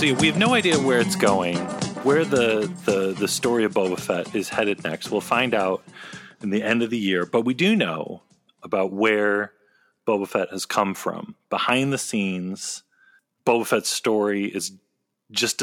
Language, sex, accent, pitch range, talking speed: English, male, American, 95-115 Hz, 175 wpm